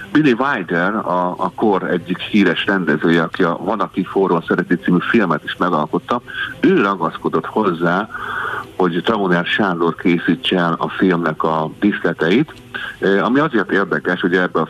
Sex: male